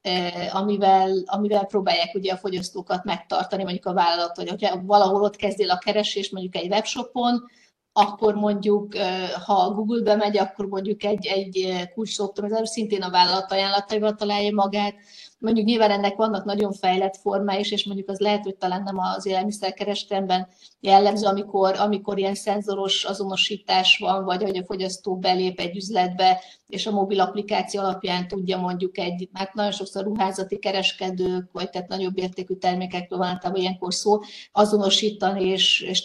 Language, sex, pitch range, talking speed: Hungarian, female, 185-210 Hz, 145 wpm